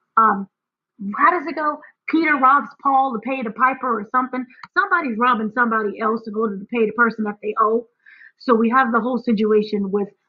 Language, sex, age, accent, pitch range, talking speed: English, female, 20-39, American, 215-260 Hz, 200 wpm